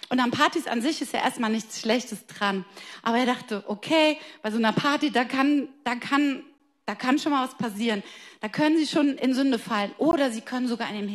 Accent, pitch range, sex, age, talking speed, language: German, 225-285 Hz, female, 30-49, 225 wpm, German